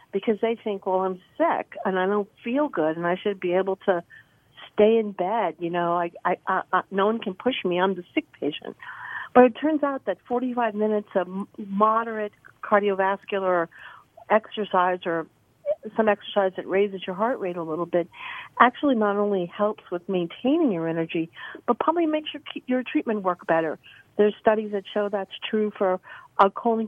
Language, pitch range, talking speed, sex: English, 185-225 Hz, 185 wpm, female